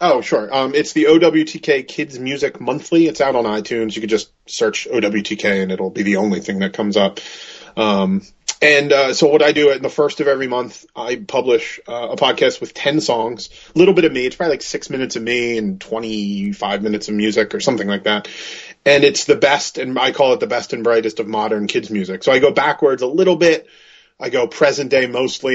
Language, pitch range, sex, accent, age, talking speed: English, 110-160 Hz, male, American, 30-49, 230 wpm